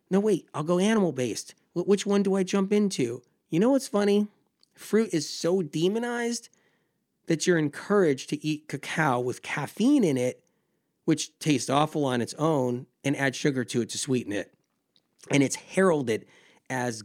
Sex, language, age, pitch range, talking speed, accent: male, English, 30-49, 125-175 Hz, 165 wpm, American